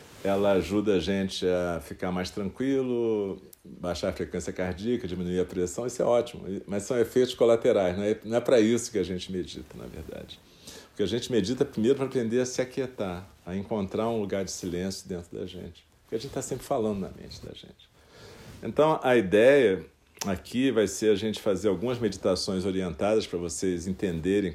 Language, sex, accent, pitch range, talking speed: Portuguese, male, Brazilian, 90-115 Hz, 190 wpm